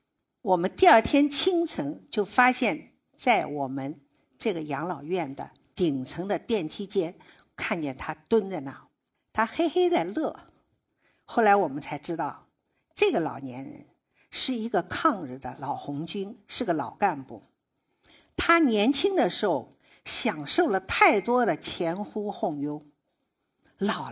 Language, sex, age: Chinese, female, 50-69